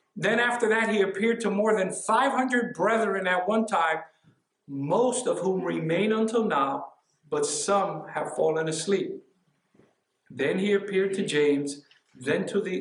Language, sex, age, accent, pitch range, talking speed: English, male, 60-79, American, 150-215 Hz, 145 wpm